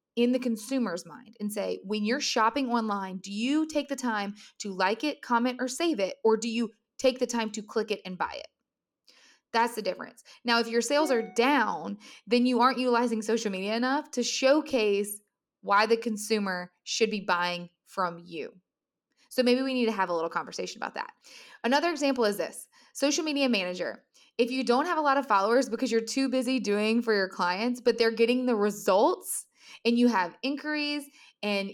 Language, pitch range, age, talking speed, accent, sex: English, 200-255 Hz, 20-39, 195 wpm, American, female